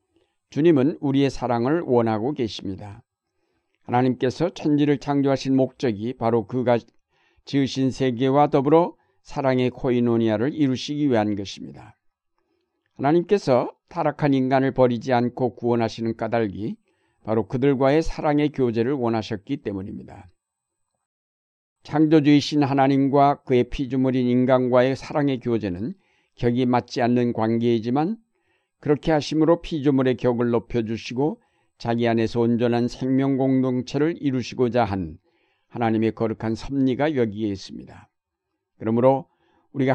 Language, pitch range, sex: Korean, 120-145 Hz, male